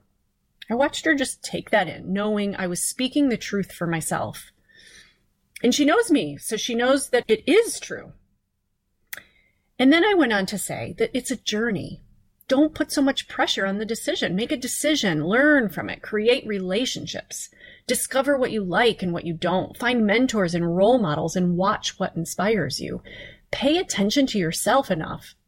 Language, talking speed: English, 180 wpm